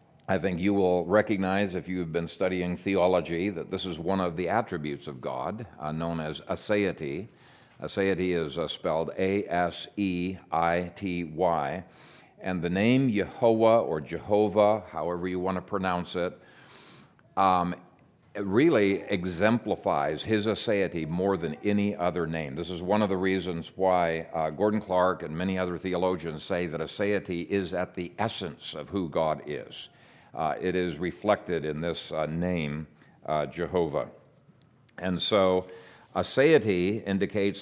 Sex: male